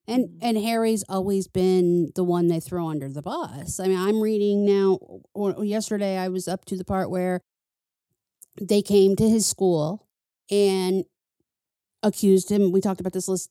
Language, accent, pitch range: English, American, 175-195 Hz